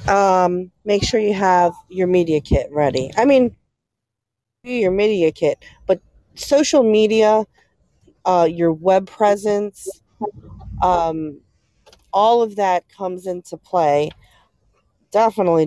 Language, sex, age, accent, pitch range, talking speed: English, female, 40-59, American, 155-190 Hz, 115 wpm